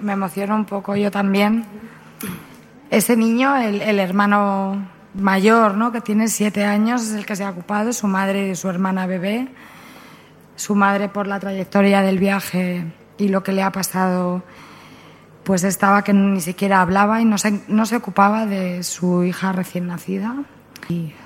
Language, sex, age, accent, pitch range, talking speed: Spanish, female, 20-39, Spanish, 190-220 Hz, 170 wpm